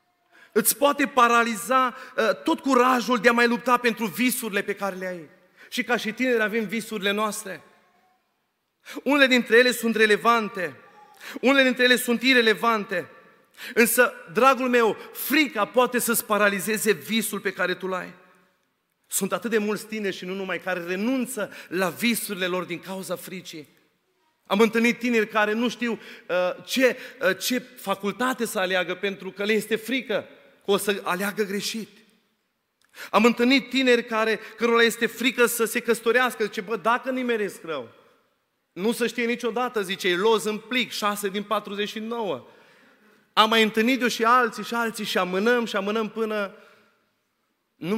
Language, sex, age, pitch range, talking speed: Romanian, male, 30-49, 195-240 Hz, 150 wpm